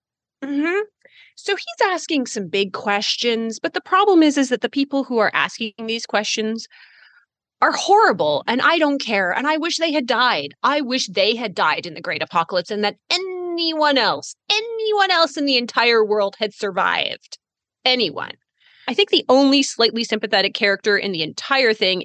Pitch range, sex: 205-300 Hz, female